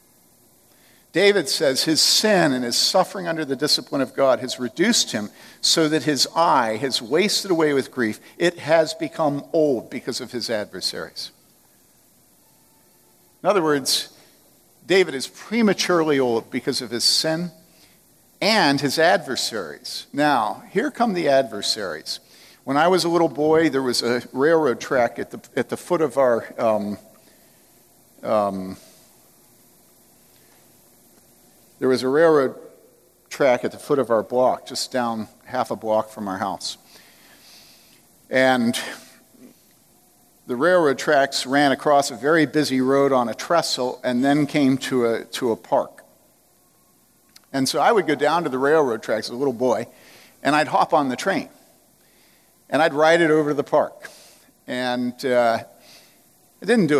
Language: English